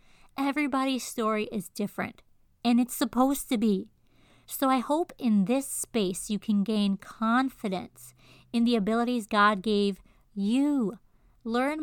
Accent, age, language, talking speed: American, 40-59, English, 130 wpm